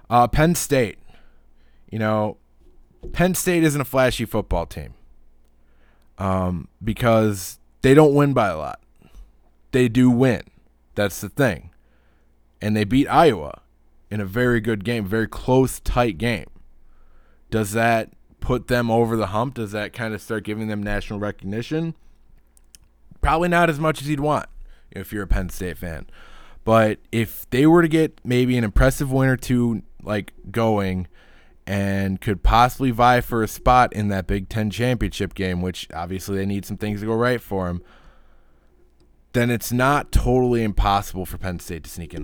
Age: 20-39